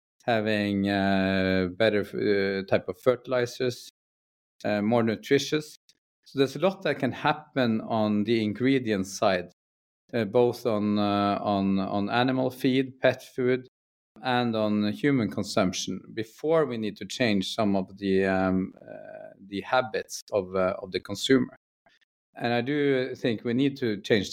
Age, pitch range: 50-69, 100-130 Hz